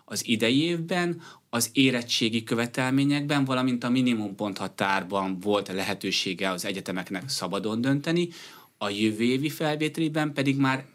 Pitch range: 105-135 Hz